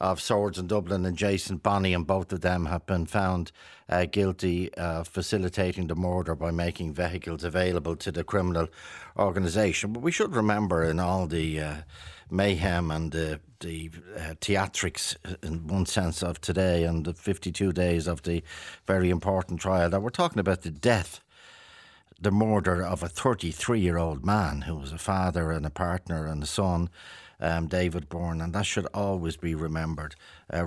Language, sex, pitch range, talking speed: English, male, 80-95 Hz, 175 wpm